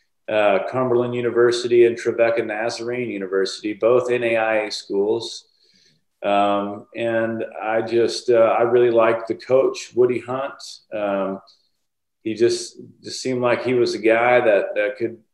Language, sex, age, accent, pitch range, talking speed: English, male, 40-59, American, 115-150 Hz, 135 wpm